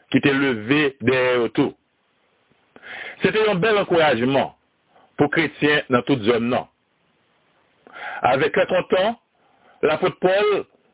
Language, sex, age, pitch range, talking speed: French, male, 60-79, 140-190 Hz, 105 wpm